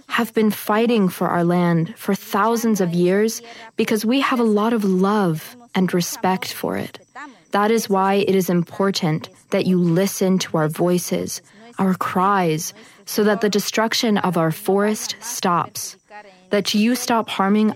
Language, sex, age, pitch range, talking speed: English, female, 20-39, 185-225 Hz, 160 wpm